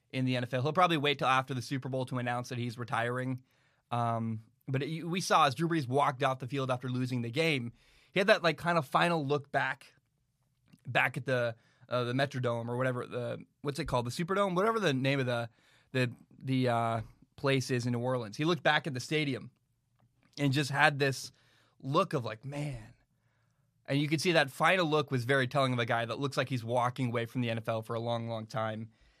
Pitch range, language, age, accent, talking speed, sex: 125-150 Hz, English, 20-39, American, 225 wpm, male